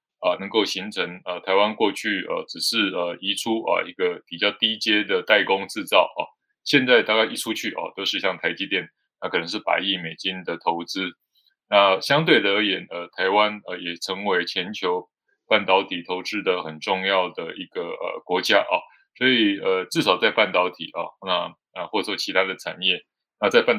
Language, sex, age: Chinese, male, 20-39